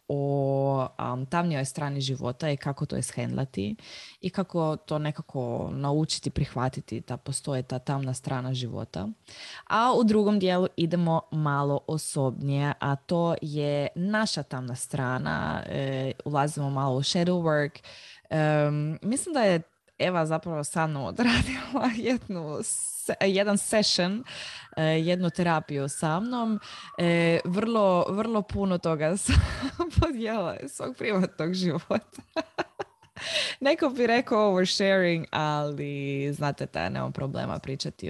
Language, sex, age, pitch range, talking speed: Croatian, female, 20-39, 140-185 Hz, 125 wpm